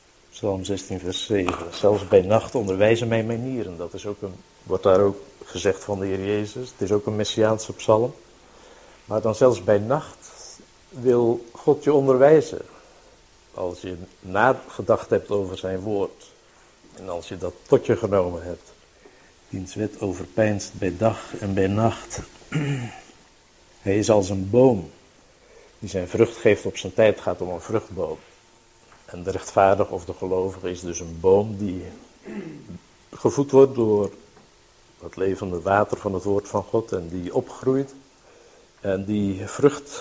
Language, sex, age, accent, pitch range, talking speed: Dutch, male, 60-79, Dutch, 95-115 Hz, 155 wpm